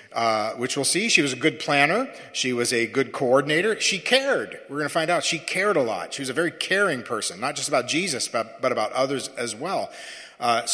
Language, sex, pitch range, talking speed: English, male, 125-165 Hz, 235 wpm